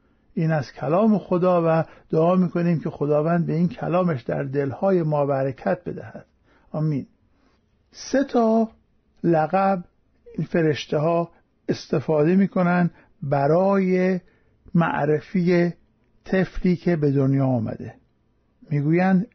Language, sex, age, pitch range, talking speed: Persian, male, 50-69, 145-200 Hz, 100 wpm